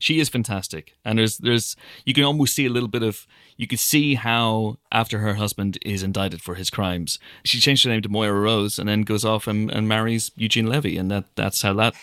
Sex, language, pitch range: male, English, 95-120 Hz